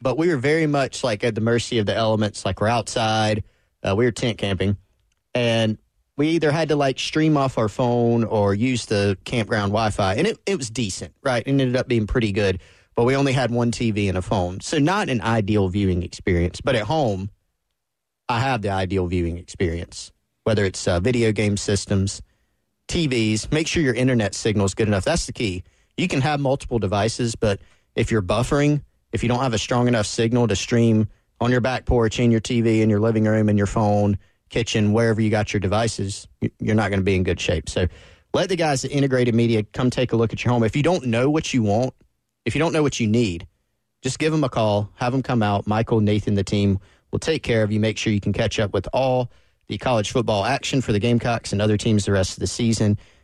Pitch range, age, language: 100-125 Hz, 30-49, English